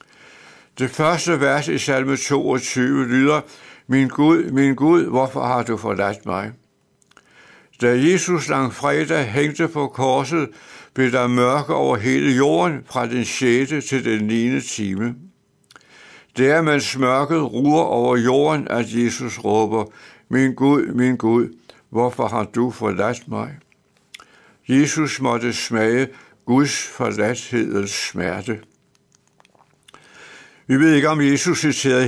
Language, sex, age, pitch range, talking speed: Danish, male, 70-89, 120-150 Hz, 125 wpm